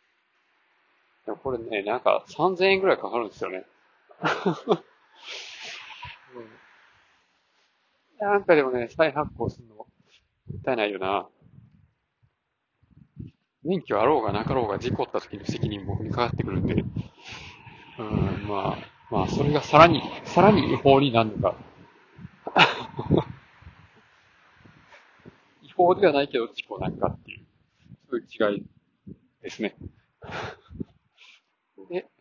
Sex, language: male, Japanese